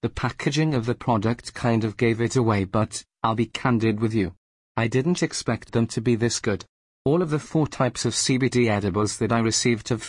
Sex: male